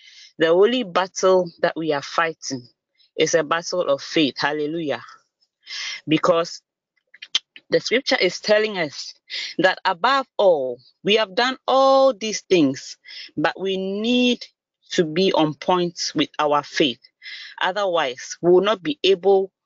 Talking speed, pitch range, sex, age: 135 wpm, 155-215 Hz, female, 30-49